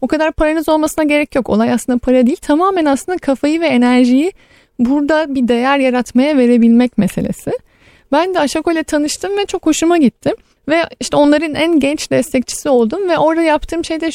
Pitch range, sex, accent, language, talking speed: 245-310 Hz, female, native, Turkish, 175 wpm